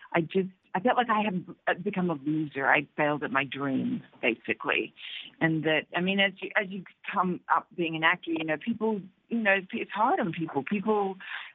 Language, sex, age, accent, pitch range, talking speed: English, female, 50-69, American, 155-190 Hz, 205 wpm